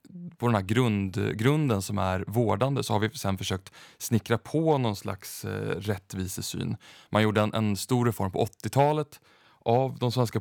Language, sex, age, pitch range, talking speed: Swedish, male, 30-49, 100-120 Hz, 160 wpm